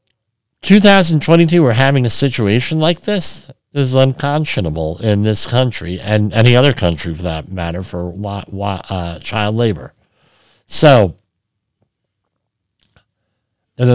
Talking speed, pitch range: 110 wpm, 110-160 Hz